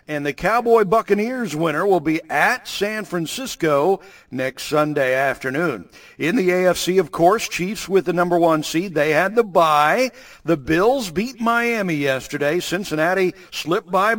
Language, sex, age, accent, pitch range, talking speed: English, male, 50-69, American, 145-195 Hz, 150 wpm